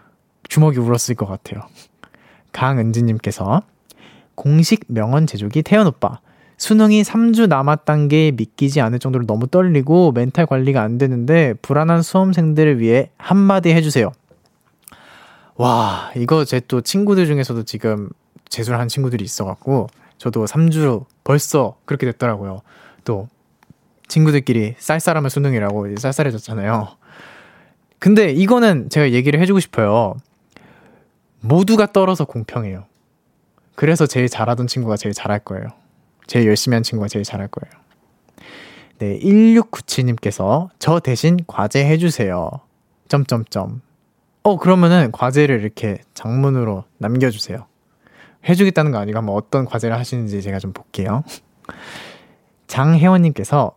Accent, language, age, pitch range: native, Korean, 20-39, 115-165 Hz